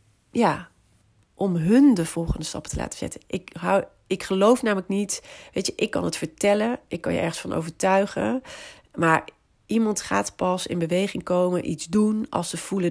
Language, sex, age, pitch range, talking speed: Dutch, female, 40-59, 160-195 Hz, 180 wpm